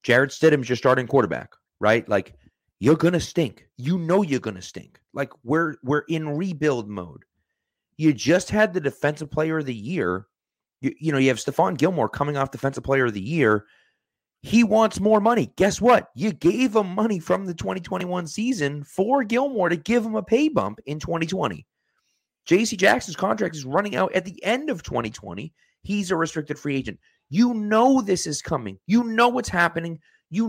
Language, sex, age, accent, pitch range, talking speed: English, male, 30-49, American, 135-210 Hz, 190 wpm